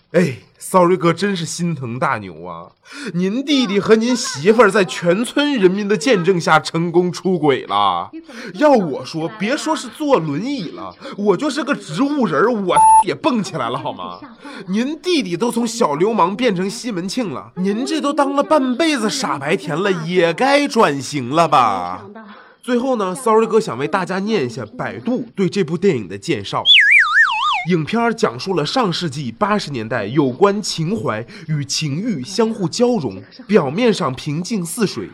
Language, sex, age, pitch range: Chinese, male, 20-39, 160-235 Hz